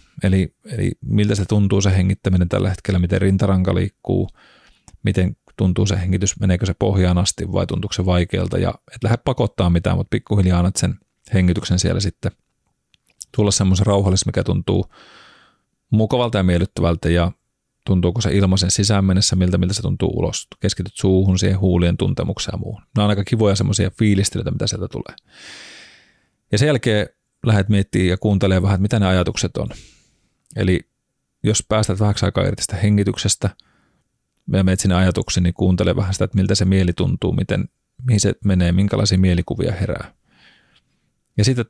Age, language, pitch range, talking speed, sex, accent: 30-49, Finnish, 95-110 Hz, 160 wpm, male, native